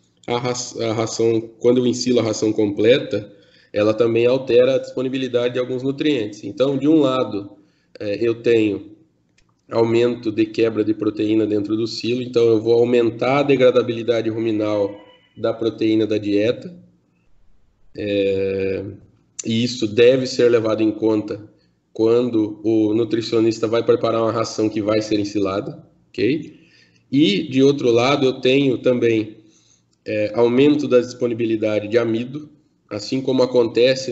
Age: 10-29